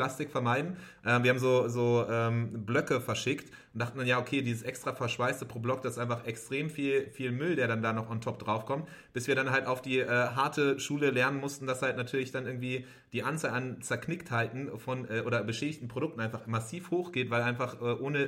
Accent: German